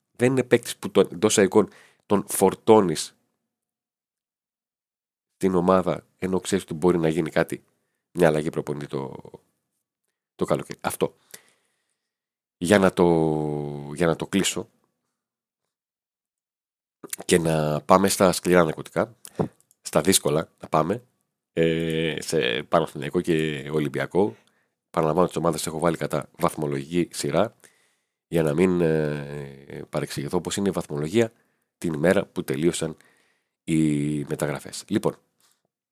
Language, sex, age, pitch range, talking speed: Greek, male, 40-59, 75-95 Hz, 120 wpm